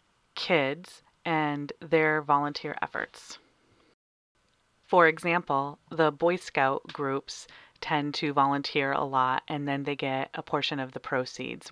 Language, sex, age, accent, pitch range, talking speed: English, female, 30-49, American, 135-155 Hz, 130 wpm